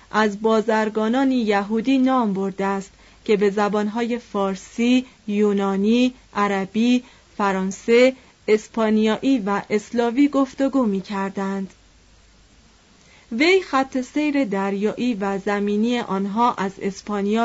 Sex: female